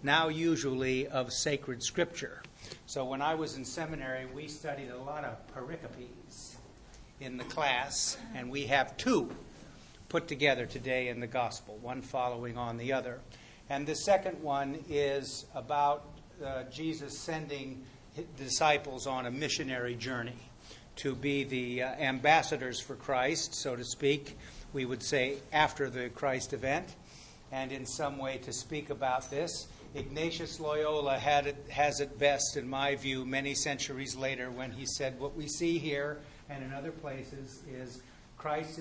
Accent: American